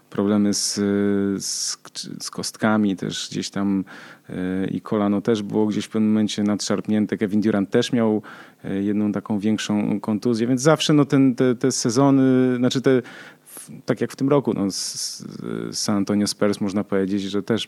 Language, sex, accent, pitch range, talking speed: Polish, male, native, 105-130 Hz, 170 wpm